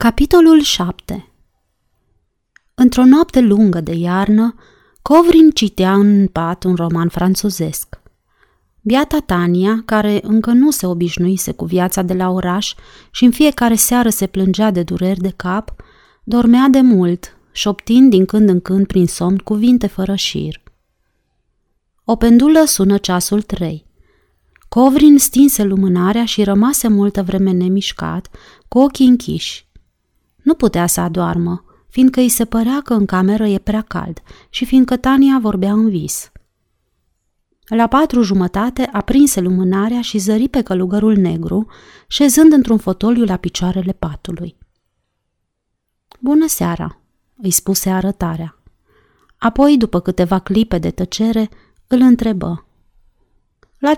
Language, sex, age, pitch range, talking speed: Romanian, female, 30-49, 180-240 Hz, 130 wpm